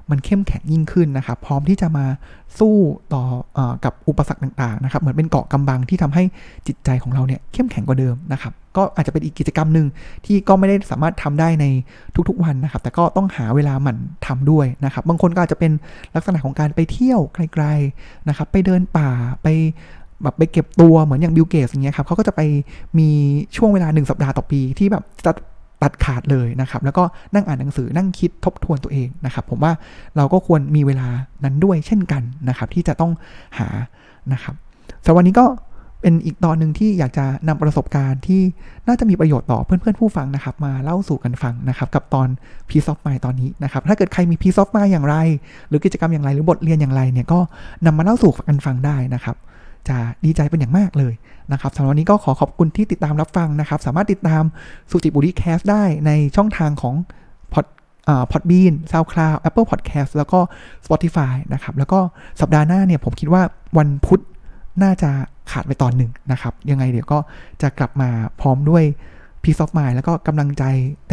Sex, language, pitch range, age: male, Thai, 135-170 Hz, 20-39